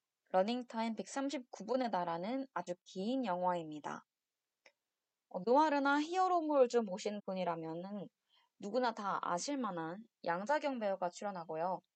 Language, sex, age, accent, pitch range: Korean, female, 20-39, native, 180-270 Hz